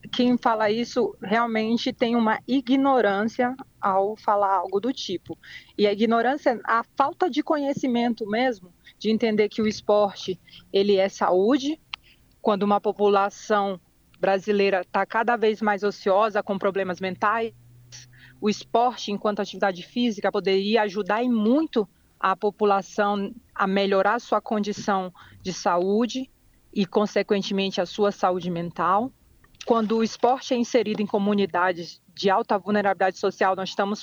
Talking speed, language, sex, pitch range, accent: 130 wpm, Portuguese, female, 195-230 Hz, Brazilian